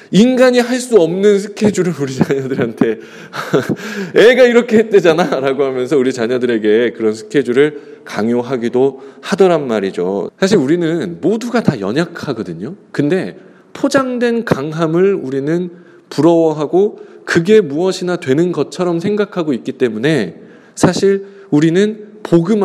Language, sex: English, male